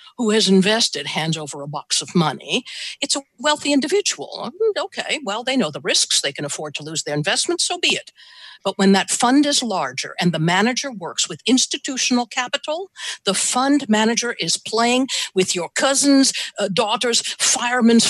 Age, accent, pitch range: 60-79, American, 170-250 Hz